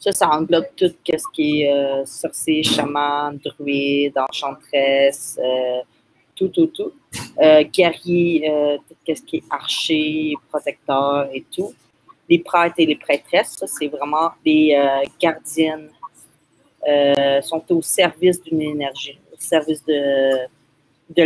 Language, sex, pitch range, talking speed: French, female, 145-170 Hz, 135 wpm